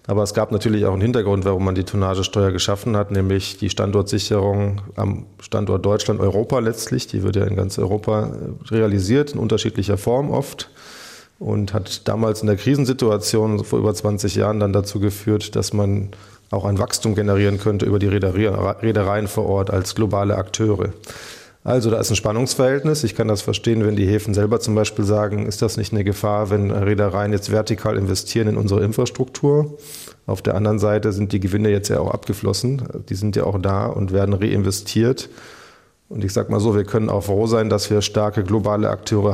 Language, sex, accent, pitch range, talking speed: German, male, German, 100-110 Hz, 190 wpm